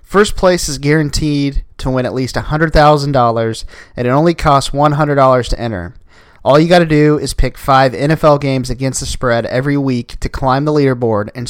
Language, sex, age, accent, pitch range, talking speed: English, male, 30-49, American, 125-150 Hz, 190 wpm